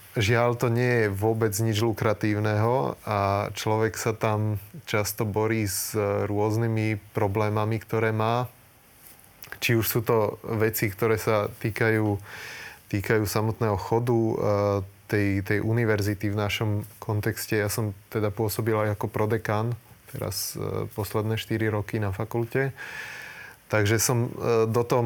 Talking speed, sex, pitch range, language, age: 120 wpm, male, 105-120 Hz, Slovak, 30-49